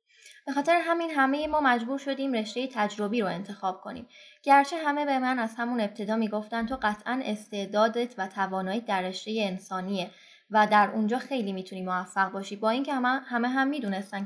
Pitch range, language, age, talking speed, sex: 200-270 Hz, Persian, 20-39, 175 wpm, female